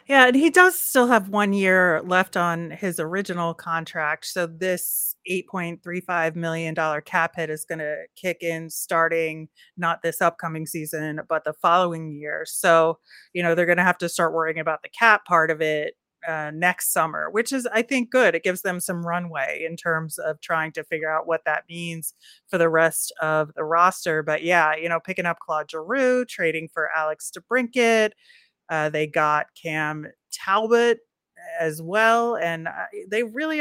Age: 30-49